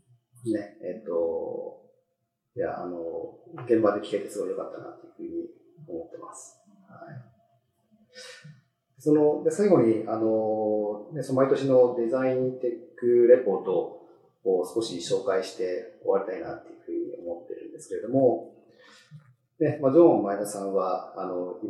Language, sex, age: Japanese, male, 40-59